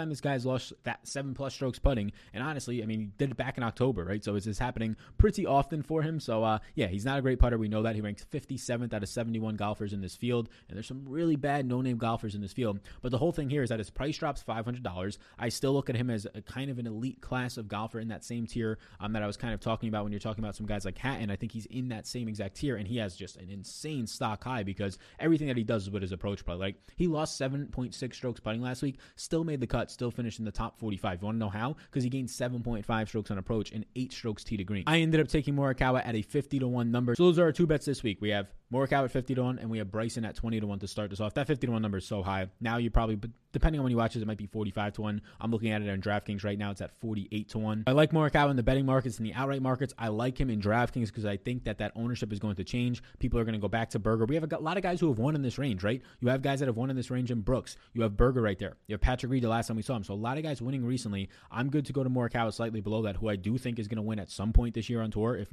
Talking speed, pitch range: 315 wpm, 105-130 Hz